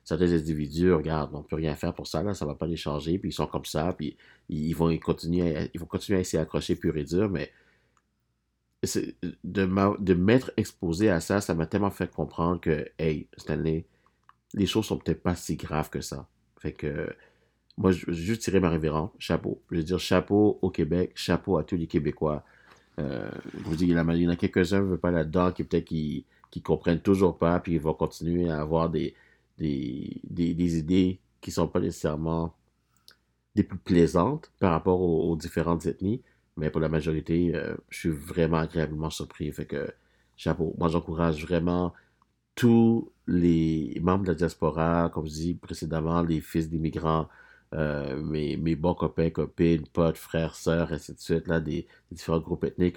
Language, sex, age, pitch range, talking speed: French, male, 50-69, 80-90 Hz, 205 wpm